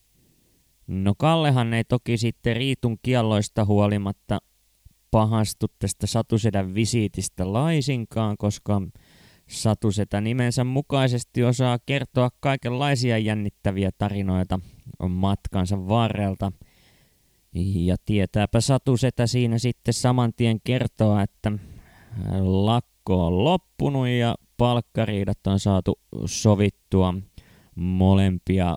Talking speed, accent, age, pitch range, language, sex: 85 wpm, native, 20-39, 95-125 Hz, Finnish, male